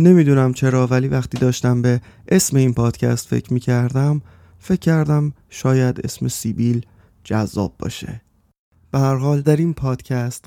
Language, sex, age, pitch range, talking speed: Persian, male, 30-49, 115-140 Hz, 130 wpm